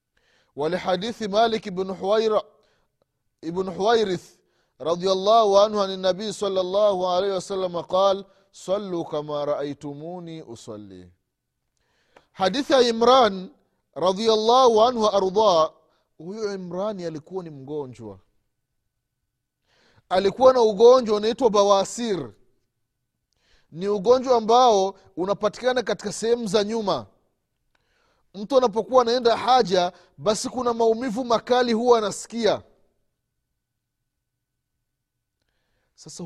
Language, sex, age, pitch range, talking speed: Swahili, male, 30-49, 145-225 Hz, 90 wpm